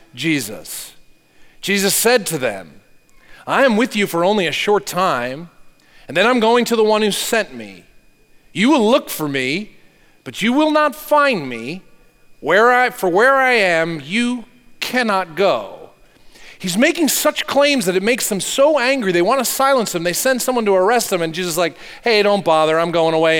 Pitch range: 175-240 Hz